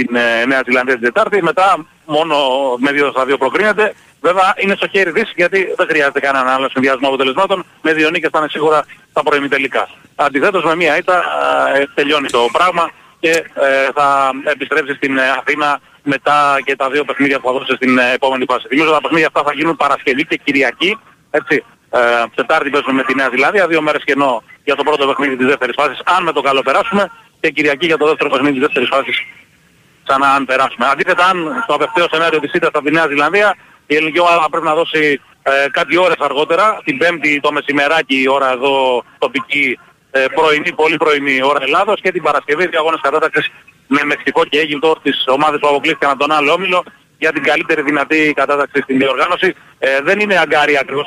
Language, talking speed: Greek, 180 wpm